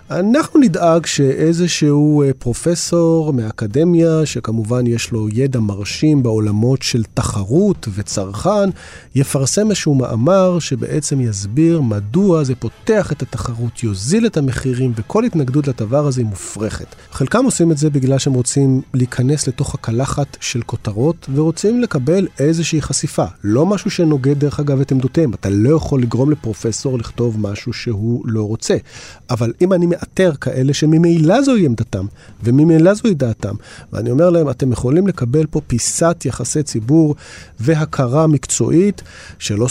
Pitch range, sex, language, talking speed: 120-160 Hz, male, Hebrew, 135 wpm